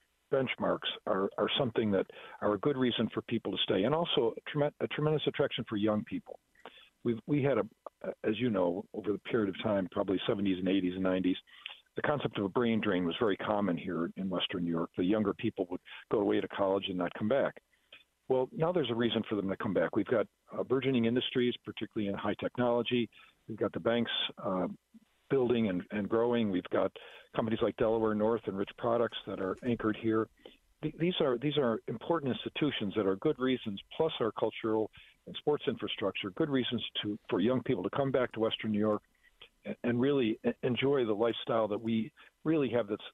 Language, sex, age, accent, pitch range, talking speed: English, male, 50-69, American, 105-130 Hz, 205 wpm